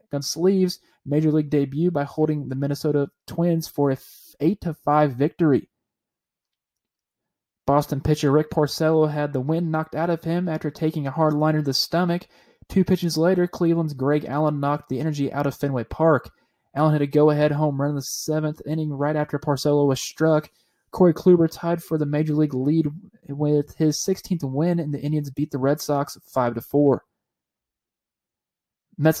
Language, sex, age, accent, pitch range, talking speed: English, male, 20-39, American, 145-160 Hz, 165 wpm